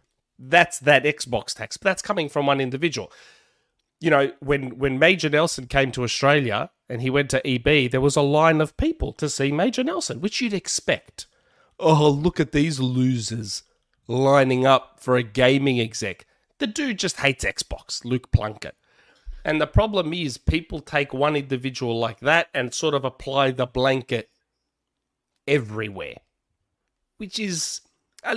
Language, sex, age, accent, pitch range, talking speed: English, male, 30-49, Australian, 120-155 Hz, 160 wpm